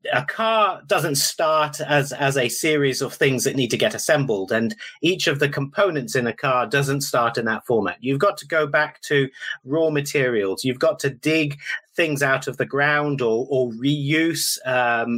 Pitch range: 130-155 Hz